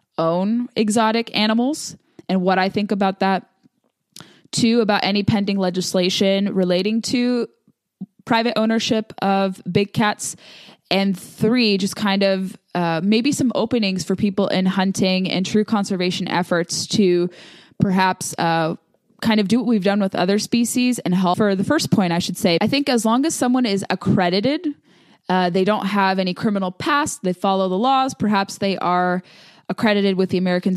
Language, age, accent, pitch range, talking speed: English, 20-39, American, 180-215 Hz, 165 wpm